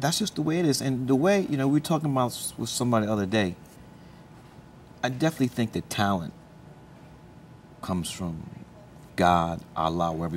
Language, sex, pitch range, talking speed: English, male, 100-135 Hz, 175 wpm